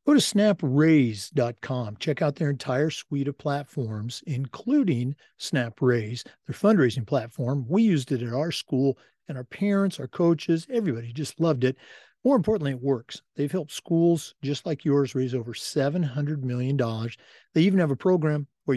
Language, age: English, 50-69